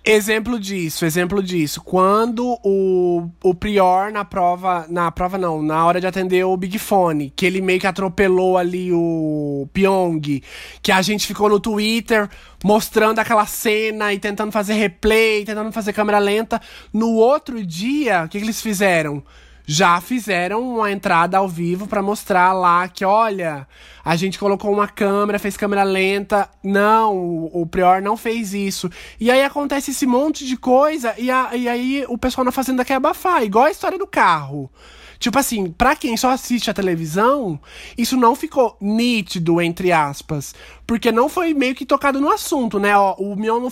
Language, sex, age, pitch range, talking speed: Portuguese, male, 20-39, 185-235 Hz, 175 wpm